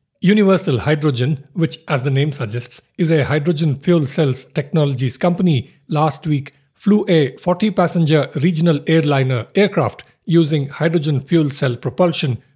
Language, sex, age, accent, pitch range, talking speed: English, male, 50-69, Indian, 135-170 Hz, 130 wpm